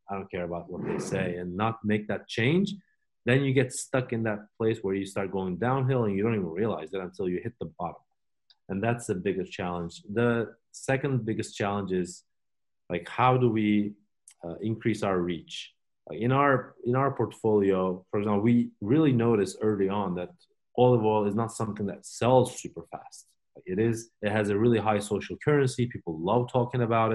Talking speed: 200 wpm